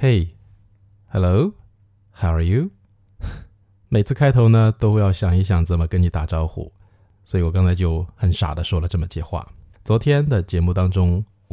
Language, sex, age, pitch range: Chinese, male, 20-39, 90-105 Hz